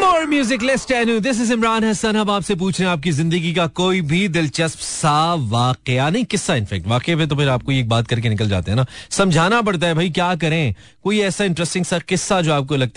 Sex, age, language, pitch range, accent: male, 30-49, Hindi, 120-170 Hz, native